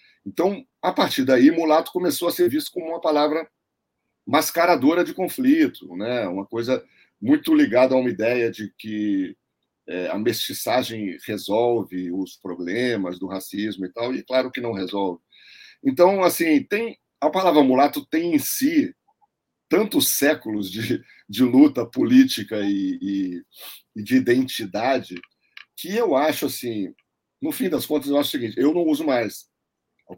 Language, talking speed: Portuguese, 145 wpm